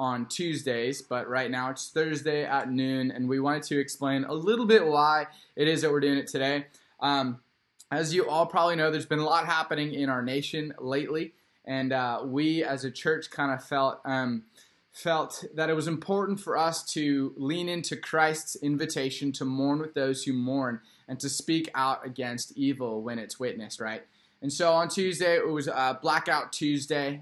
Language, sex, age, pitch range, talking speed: English, male, 10-29, 135-160 Hz, 190 wpm